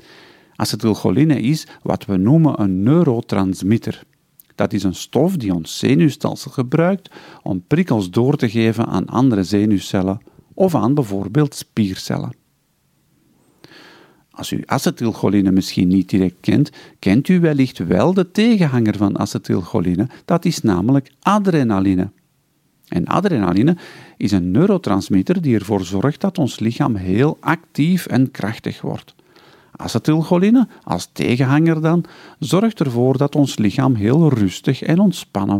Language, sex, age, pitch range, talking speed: Dutch, male, 50-69, 100-160 Hz, 125 wpm